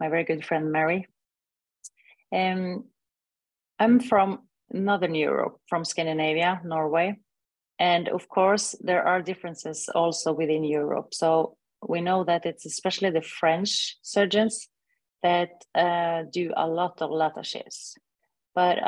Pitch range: 165-195 Hz